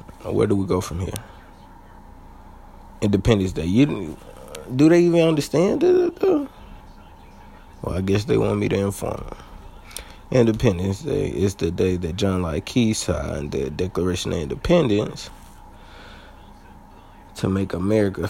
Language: English